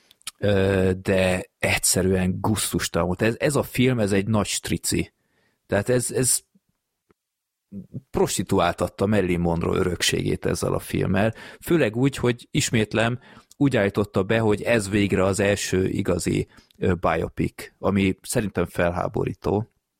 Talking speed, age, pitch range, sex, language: 115 wpm, 30-49, 95-115 Hz, male, Hungarian